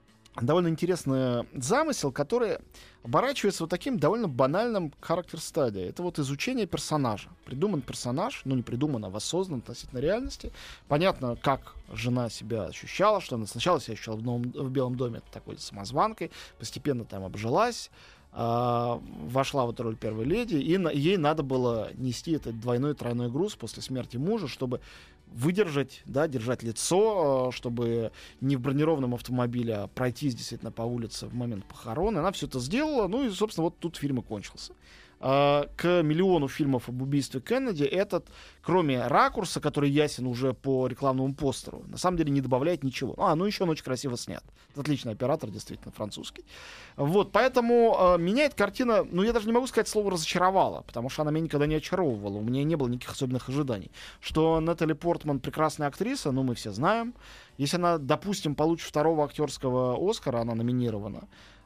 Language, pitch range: Russian, 120-170 Hz